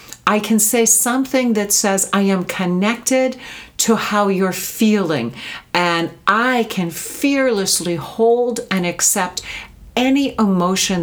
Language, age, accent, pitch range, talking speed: English, 60-79, American, 165-225 Hz, 120 wpm